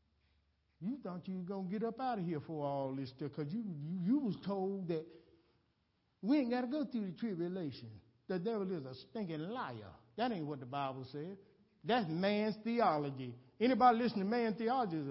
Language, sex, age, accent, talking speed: English, male, 60-79, American, 205 wpm